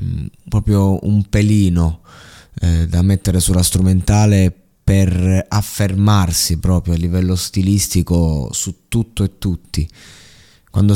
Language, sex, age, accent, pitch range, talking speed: Italian, male, 20-39, native, 90-105 Hz, 105 wpm